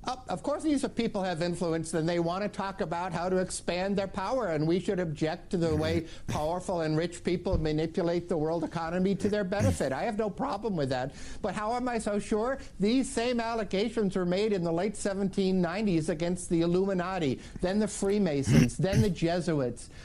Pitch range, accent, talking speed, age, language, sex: 145-195 Hz, American, 200 wpm, 60-79, English, male